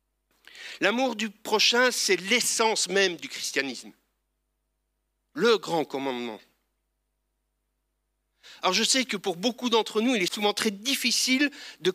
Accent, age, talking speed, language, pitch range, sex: French, 60-79, 125 wpm, French, 175-245 Hz, male